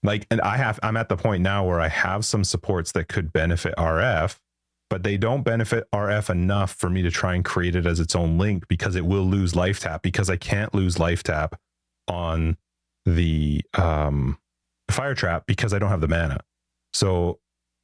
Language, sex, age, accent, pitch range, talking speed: English, male, 30-49, American, 80-100 Hz, 200 wpm